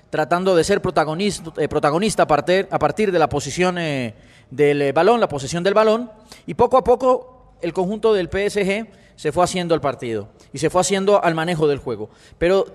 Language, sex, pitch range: Spanish, male, 155-205 Hz